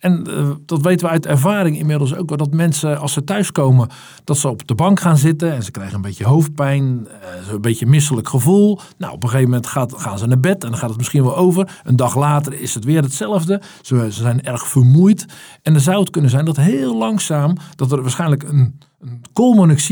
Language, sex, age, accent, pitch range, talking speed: Dutch, male, 50-69, Dutch, 125-165 Hz, 210 wpm